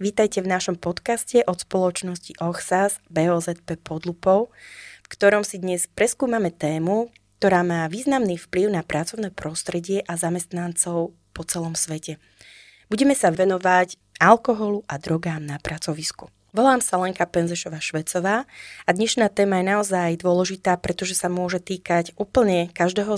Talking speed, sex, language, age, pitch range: 130 wpm, female, Slovak, 20-39, 170-200 Hz